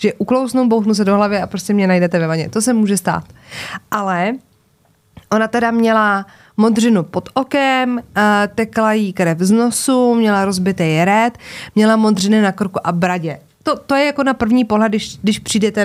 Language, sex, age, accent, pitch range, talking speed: Czech, female, 20-39, native, 180-225 Hz, 185 wpm